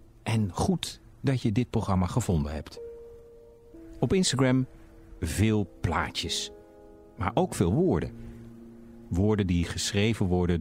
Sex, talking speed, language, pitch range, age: male, 115 wpm, Dutch, 85-120 Hz, 50-69